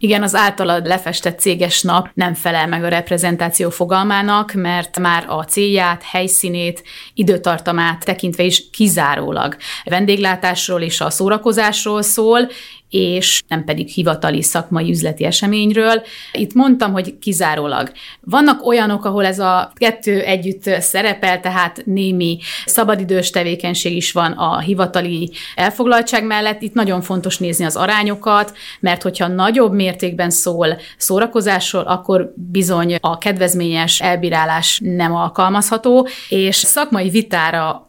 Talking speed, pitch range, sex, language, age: 125 wpm, 175-210 Hz, female, Hungarian, 30-49